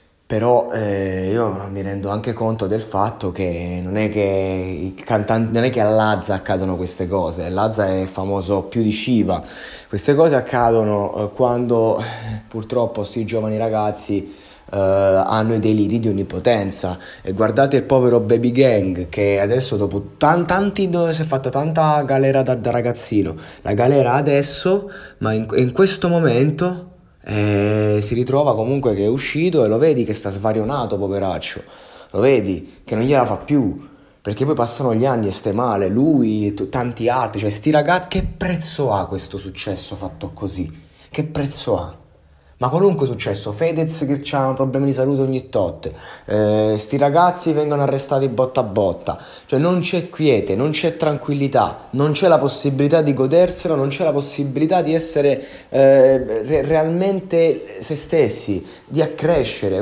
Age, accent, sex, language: 20-39, native, male, Italian